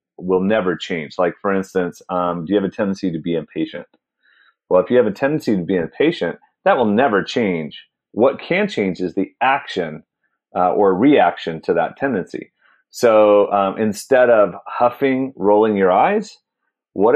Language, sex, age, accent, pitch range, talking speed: English, male, 30-49, American, 95-130 Hz, 170 wpm